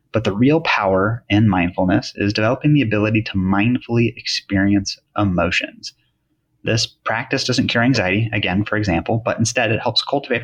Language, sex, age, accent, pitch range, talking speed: English, male, 30-49, American, 100-115 Hz, 155 wpm